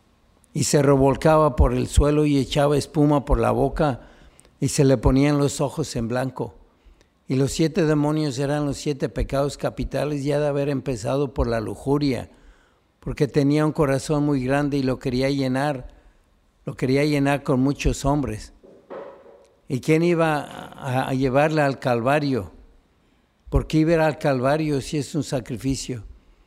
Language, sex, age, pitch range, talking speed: Spanish, male, 60-79, 125-150 Hz, 155 wpm